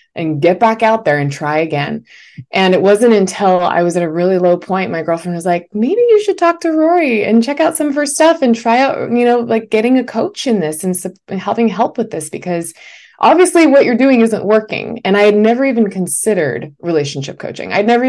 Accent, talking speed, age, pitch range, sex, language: American, 230 wpm, 20-39, 160-220 Hz, female, English